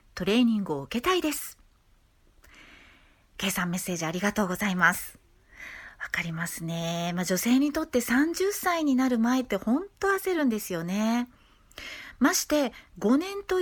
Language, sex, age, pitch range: Japanese, female, 40-59, 190-280 Hz